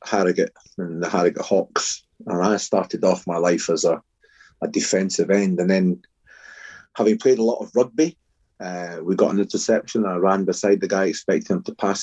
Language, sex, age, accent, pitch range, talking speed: English, male, 30-49, British, 90-105 Hz, 195 wpm